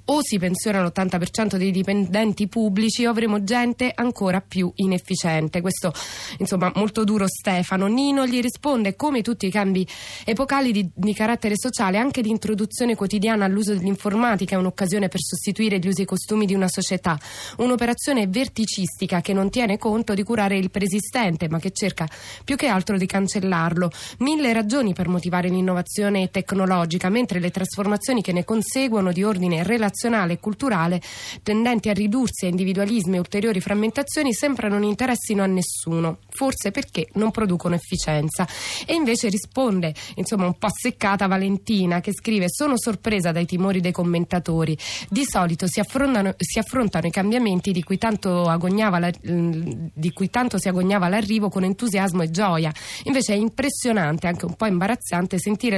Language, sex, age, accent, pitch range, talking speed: Italian, female, 20-39, native, 180-225 Hz, 155 wpm